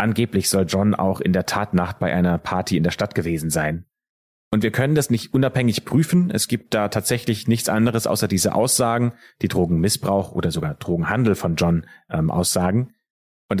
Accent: German